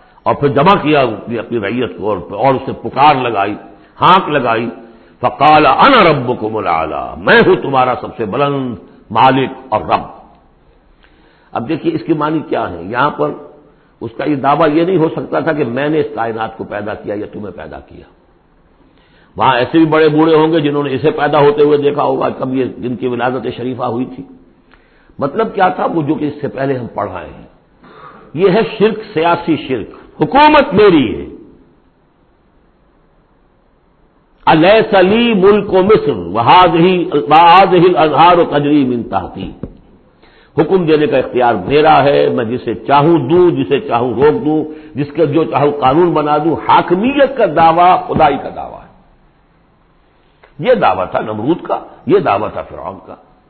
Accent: Indian